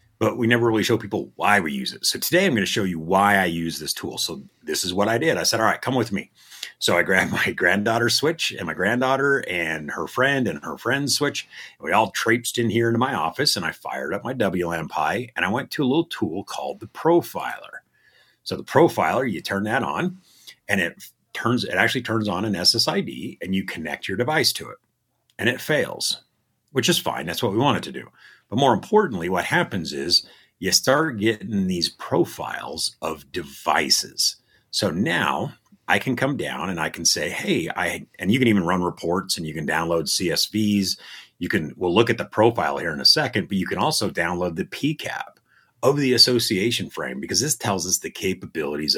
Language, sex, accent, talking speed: English, male, American, 215 wpm